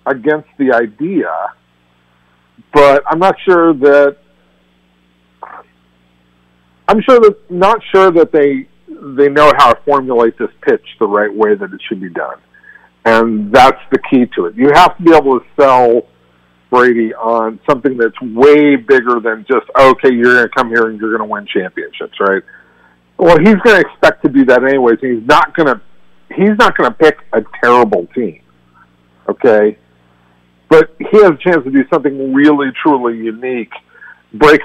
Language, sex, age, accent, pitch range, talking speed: English, male, 50-69, American, 95-150 Hz, 170 wpm